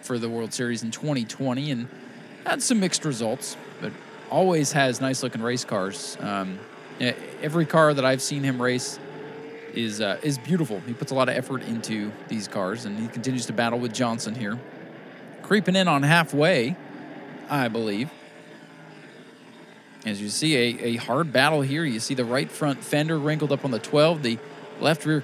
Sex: male